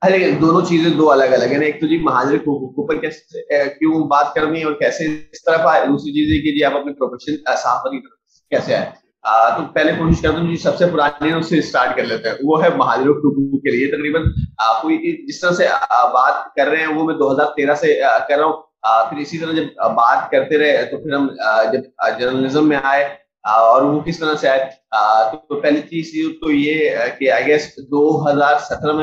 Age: 30-49